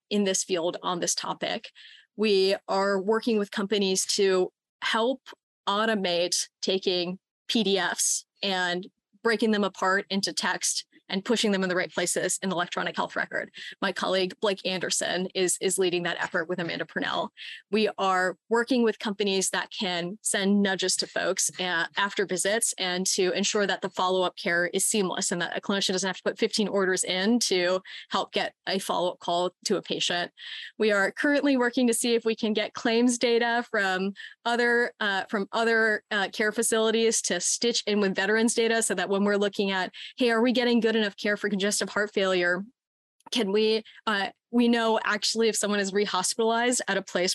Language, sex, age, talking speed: English, female, 20-39, 185 wpm